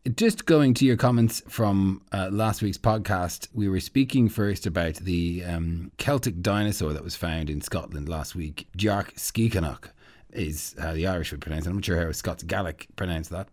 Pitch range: 85-115 Hz